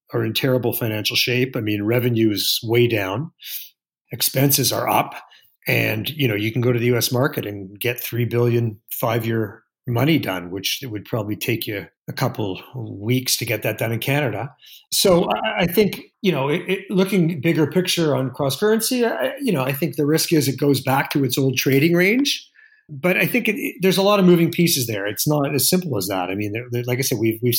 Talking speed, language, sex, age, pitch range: 220 wpm, English, male, 50-69, 115-165 Hz